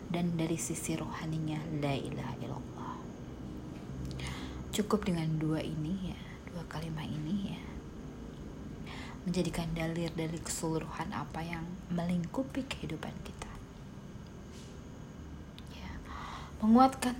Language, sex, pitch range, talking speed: Indonesian, female, 155-200 Hz, 95 wpm